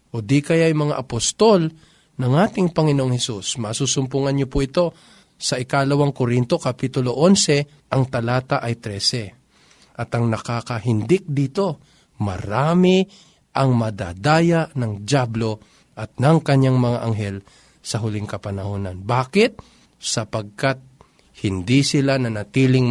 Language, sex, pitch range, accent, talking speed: Filipino, male, 115-150 Hz, native, 115 wpm